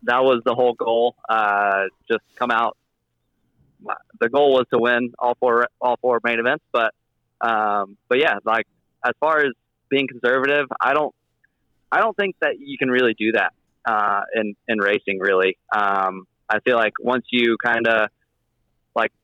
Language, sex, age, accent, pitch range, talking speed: English, male, 20-39, American, 100-120 Hz, 170 wpm